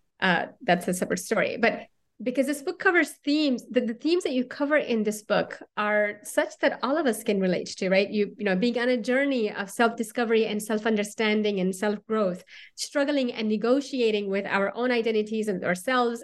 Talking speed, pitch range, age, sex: 190 wpm, 210-260 Hz, 30-49, female